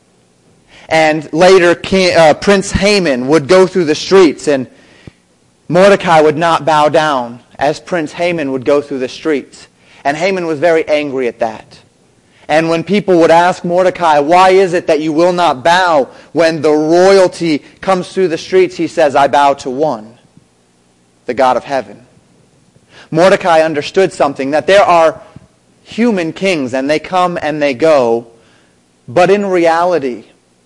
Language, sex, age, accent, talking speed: English, male, 30-49, American, 155 wpm